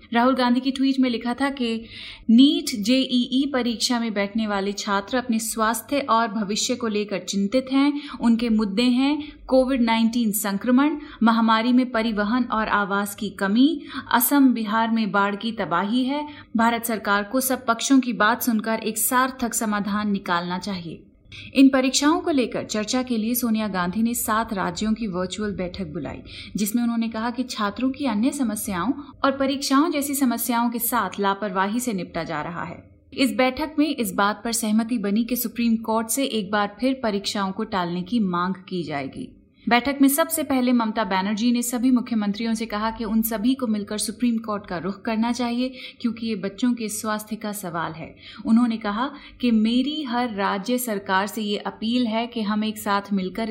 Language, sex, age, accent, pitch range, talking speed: Hindi, female, 30-49, native, 205-250 Hz, 180 wpm